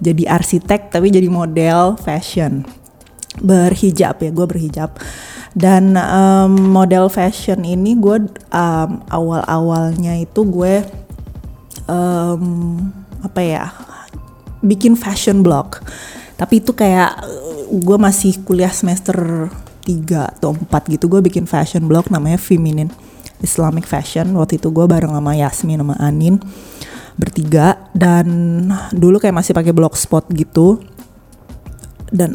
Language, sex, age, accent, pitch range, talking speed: Indonesian, female, 20-39, native, 170-205 Hz, 115 wpm